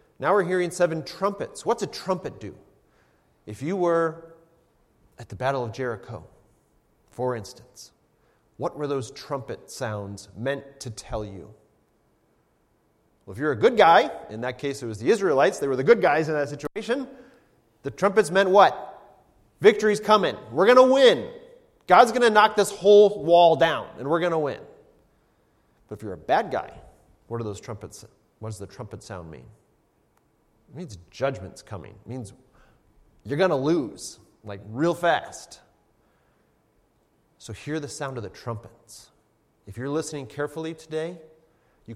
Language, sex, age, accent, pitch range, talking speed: English, male, 30-49, American, 110-165 Hz, 160 wpm